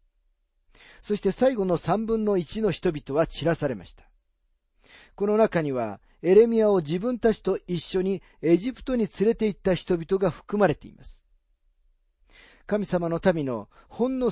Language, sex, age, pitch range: Japanese, male, 40-59, 125-205 Hz